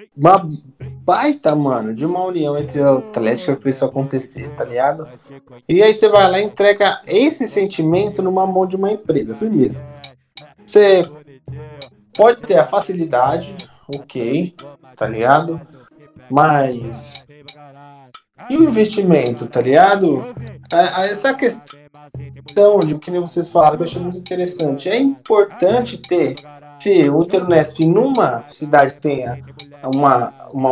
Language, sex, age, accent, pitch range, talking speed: Portuguese, male, 20-39, Brazilian, 140-210 Hz, 125 wpm